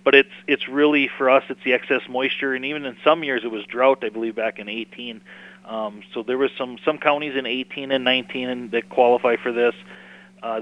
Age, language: 40-59, English